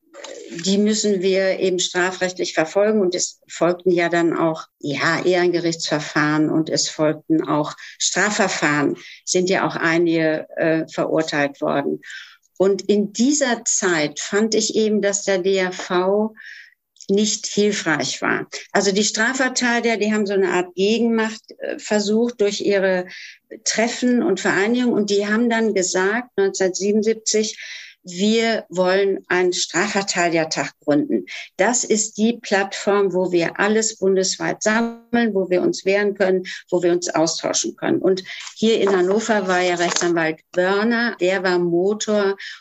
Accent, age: German, 60-79